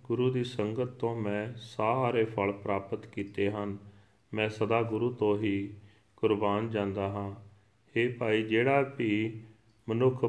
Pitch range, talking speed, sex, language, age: 105-115 Hz, 120 wpm, male, Punjabi, 40-59